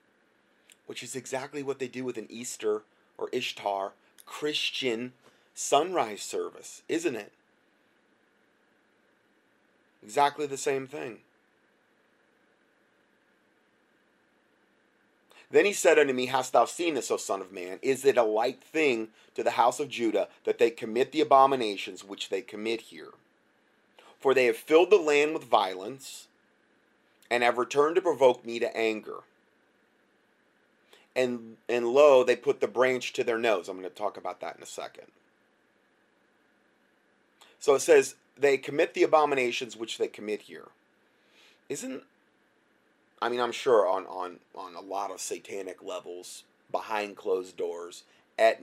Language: English